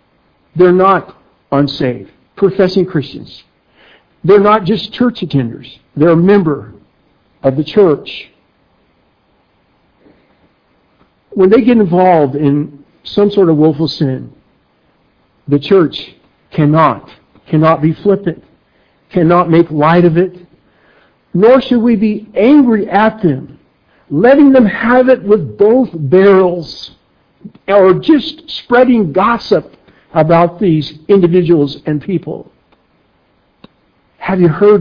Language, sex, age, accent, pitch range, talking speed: English, male, 60-79, American, 145-215 Hz, 110 wpm